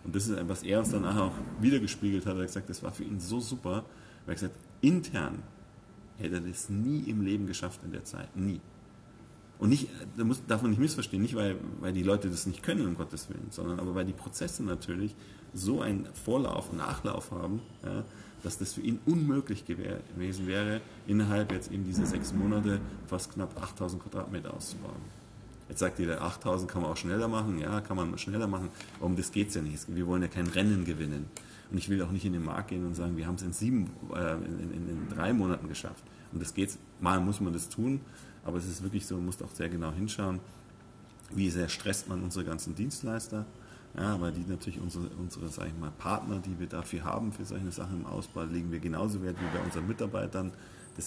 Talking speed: 215 wpm